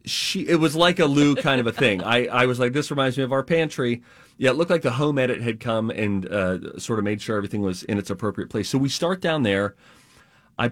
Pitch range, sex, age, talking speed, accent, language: 100-125 Hz, male, 30-49, 265 wpm, American, English